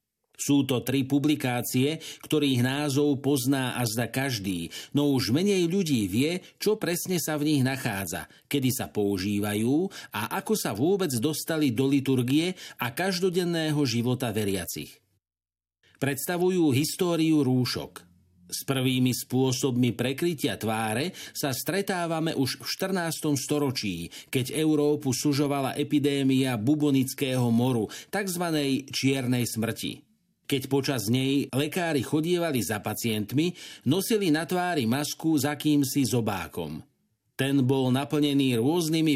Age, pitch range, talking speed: 50-69, 120-150 Hz, 115 wpm